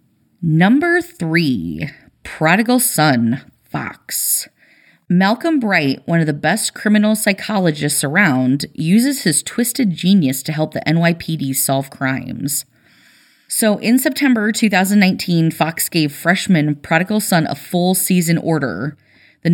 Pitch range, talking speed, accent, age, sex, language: 150-205 Hz, 115 wpm, American, 30-49, female, English